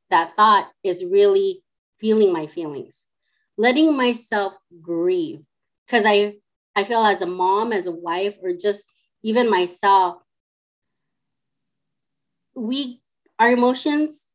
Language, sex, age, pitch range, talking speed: English, female, 30-49, 175-235 Hz, 115 wpm